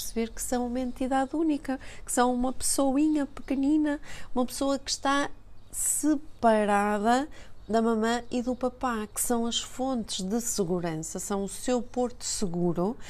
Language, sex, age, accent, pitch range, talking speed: Portuguese, female, 30-49, Brazilian, 205-255 Hz, 145 wpm